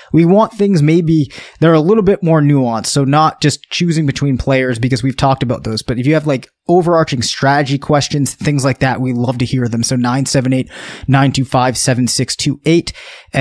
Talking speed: 175 wpm